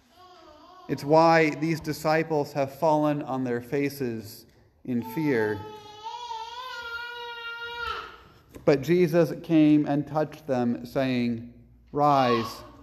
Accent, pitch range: American, 115-175 Hz